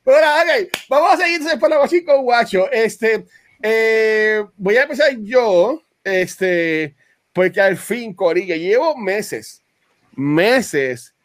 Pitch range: 165-260 Hz